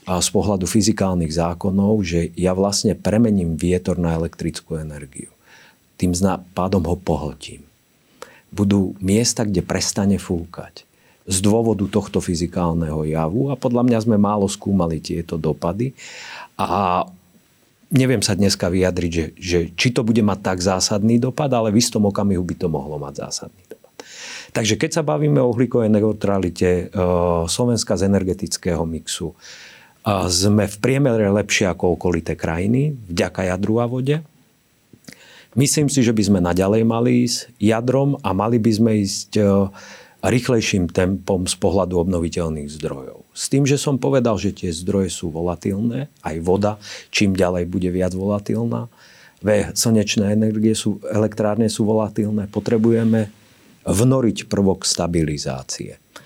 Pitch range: 90-115 Hz